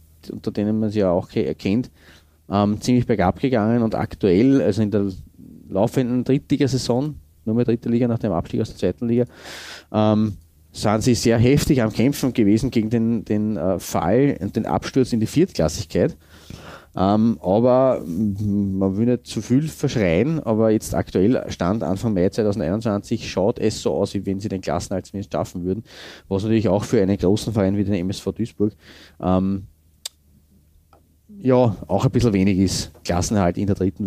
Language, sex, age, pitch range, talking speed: German, male, 30-49, 90-115 Hz, 170 wpm